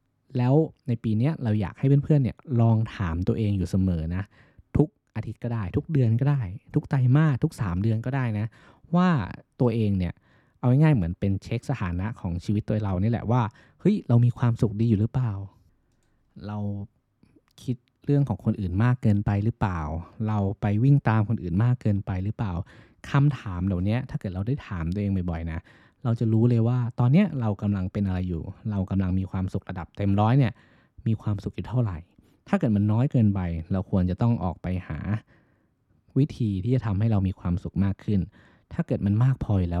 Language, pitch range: Thai, 95-125 Hz